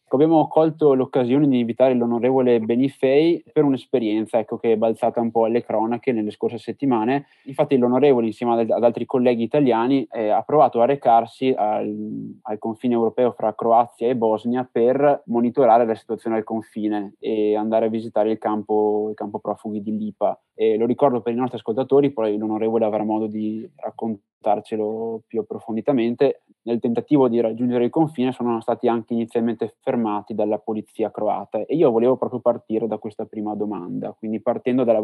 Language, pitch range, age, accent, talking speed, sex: Italian, 110-125 Hz, 20-39, native, 160 wpm, male